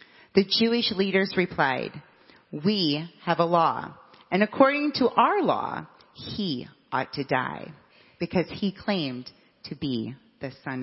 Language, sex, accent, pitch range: English, female, American, 160-235 Hz